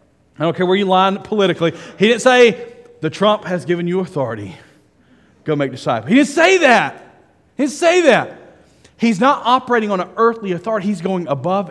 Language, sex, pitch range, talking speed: English, male, 190-255 Hz, 190 wpm